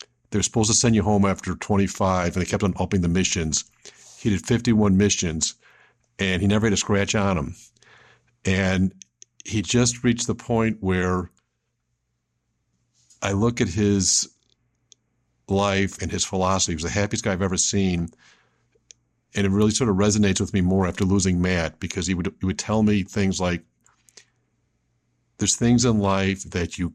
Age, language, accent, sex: 50-69, English, American, male